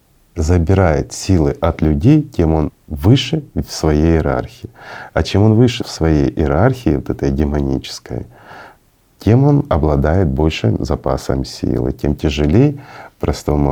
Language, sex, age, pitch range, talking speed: Russian, male, 40-59, 75-105 Hz, 125 wpm